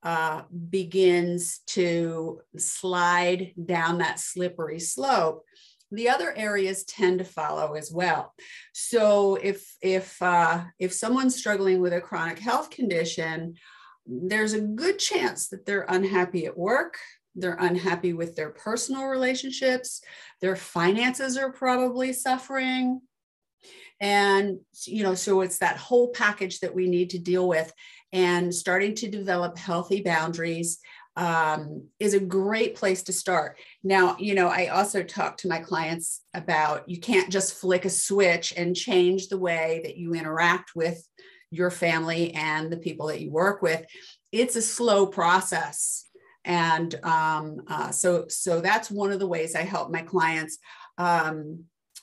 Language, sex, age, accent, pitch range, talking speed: English, female, 50-69, American, 170-205 Hz, 145 wpm